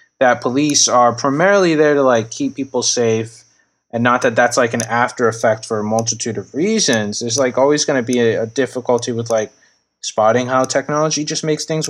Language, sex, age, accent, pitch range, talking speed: English, male, 20-39, American, 115-130 Hz, 200 wpm